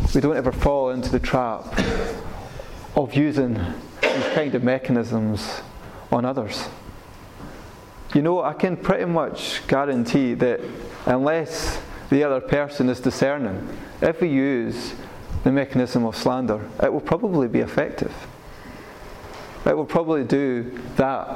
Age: 30-49